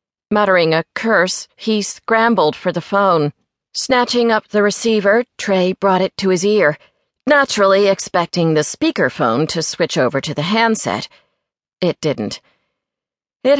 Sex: female